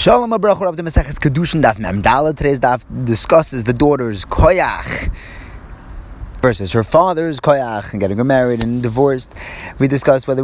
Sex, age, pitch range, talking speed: male, 30-49, 100-145 Hz, 120 wpm